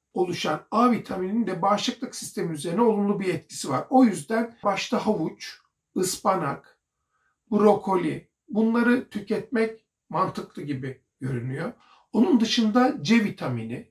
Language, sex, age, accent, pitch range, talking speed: Turkish, male, 60-79, native, 175-230 Hz, 110 wpm